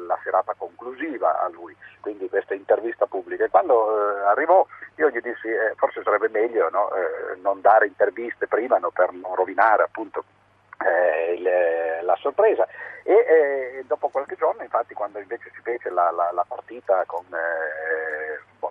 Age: 50-69